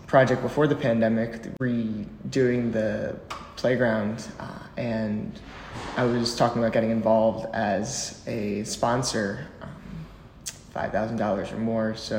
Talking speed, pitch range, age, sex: 125 wpm, 110-130 Hz, 20-39, male